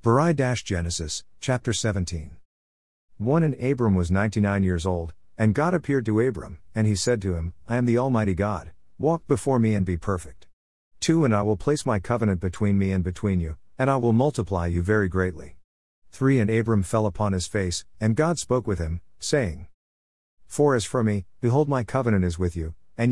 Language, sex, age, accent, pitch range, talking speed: English, male, 50-69, American, 90-120 Hz, 190 wpm